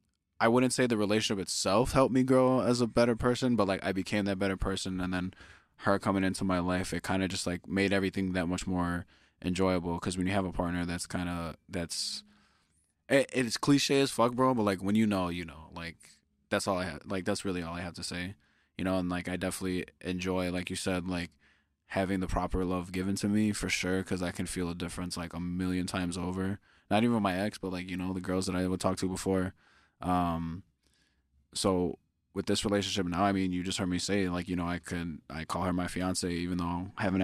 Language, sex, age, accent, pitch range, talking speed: English, male, 20-39, American, 90-100 Hz, 235 wpm